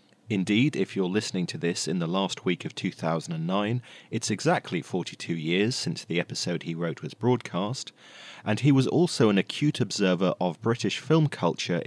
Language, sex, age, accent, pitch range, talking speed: English, male, 30-49, British, 85-130 Hz, 170 wpm